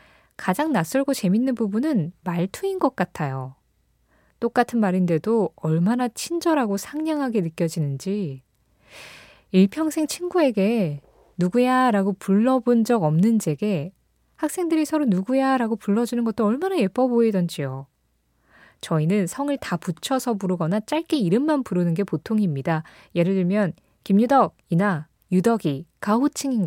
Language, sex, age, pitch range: Korean, female, 20-39, 170-245 Hz